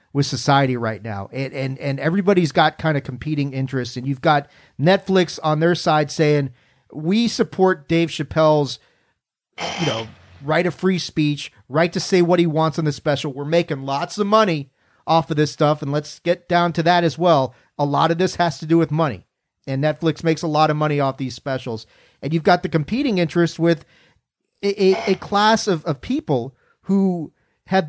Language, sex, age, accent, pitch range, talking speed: English, male, 40-59, American, 145-180 Hz, 200 wpm